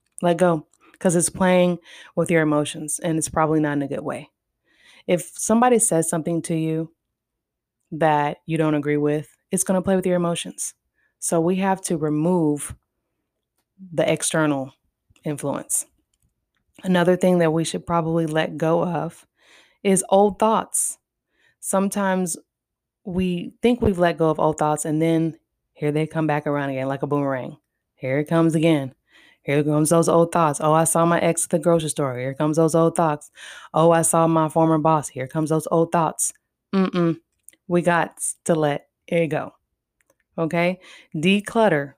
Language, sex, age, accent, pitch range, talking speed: English, female, 20-39, American, 150-180 Hz, 165 wpm